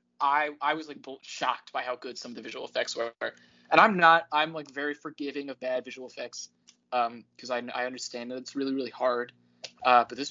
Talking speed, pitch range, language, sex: 220 wpm, 125-180 Hz, English, male